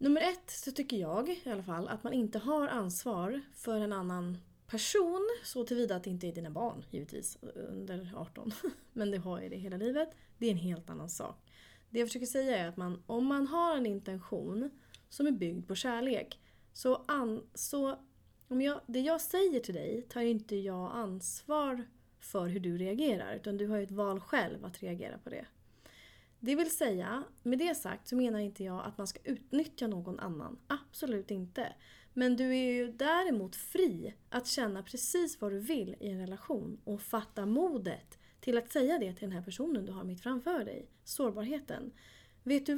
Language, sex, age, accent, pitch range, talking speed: Swedish, female, 30-49, native, 195-285 Hz, 195 wpm